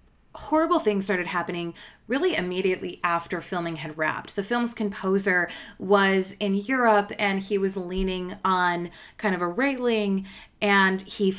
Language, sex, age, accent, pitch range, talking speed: English, female, 20-39, American, 175-205 Hz, 140 wpm